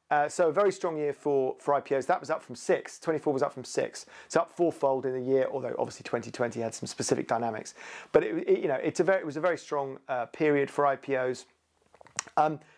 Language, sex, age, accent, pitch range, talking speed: English, male, 40-59, British, 125-155 Hz, 240 wpm